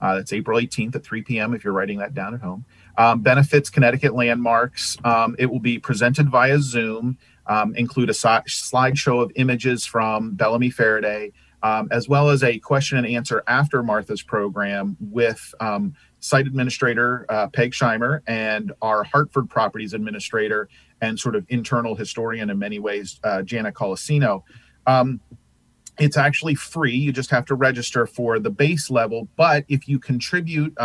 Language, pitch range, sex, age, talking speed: English, 115-140 Hz, male, 40-59, 165 wpm